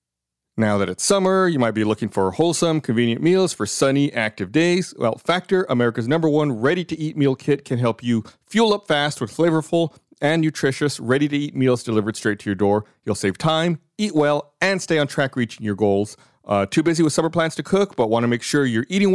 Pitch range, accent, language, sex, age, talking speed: 110-160 Hz, American, English, male, 40-59, 215 wpm